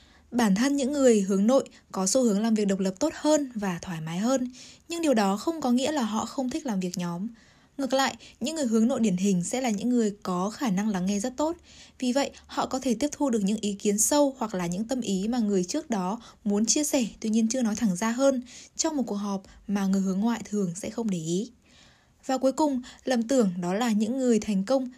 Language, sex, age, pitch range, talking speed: Vietnamese, female, 10-29, 195-255 Hz, 255 wpm